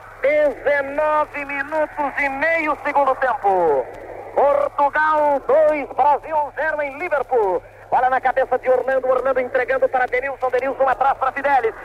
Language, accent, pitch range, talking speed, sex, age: Portuguese, Brazilian, 260-295 Hz, 125 wpm, male, 40-59